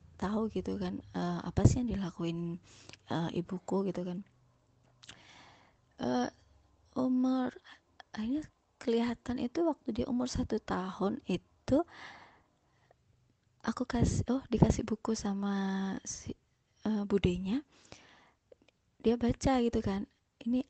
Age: 20-39